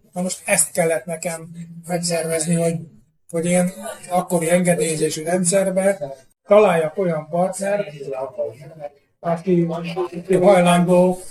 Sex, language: male, Hungarian